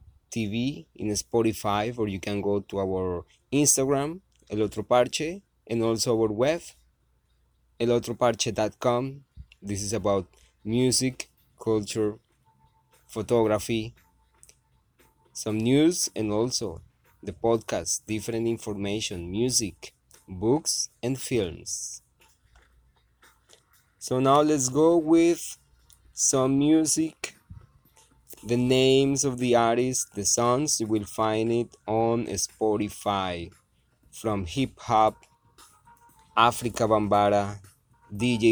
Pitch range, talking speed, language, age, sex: 100-125 Hz, 95 wpm, English, 20-39, male